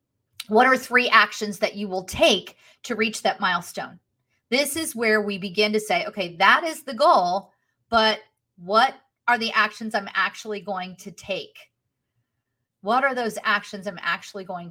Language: English